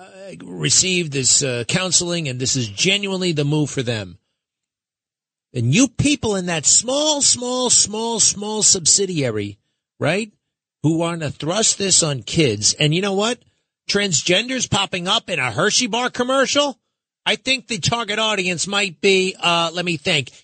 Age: 40-59